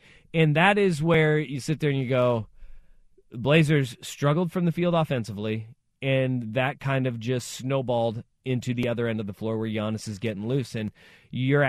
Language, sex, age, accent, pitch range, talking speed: English, male, 30-49, American, 120-155 Hz, 185 wpm